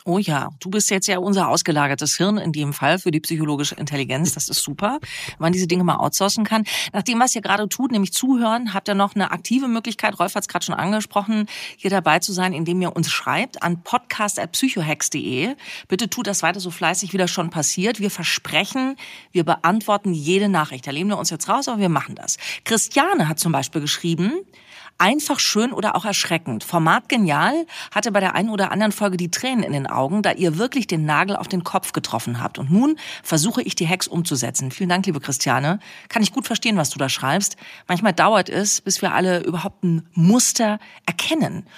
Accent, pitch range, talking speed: German, 170-215 Hz, 210 wpm